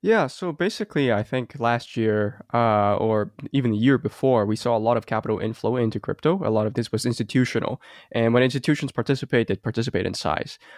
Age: 10-29